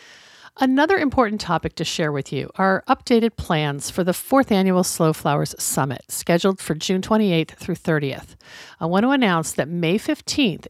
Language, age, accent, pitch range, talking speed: English, 50-69, American, 155-210 Hz, 170 wpm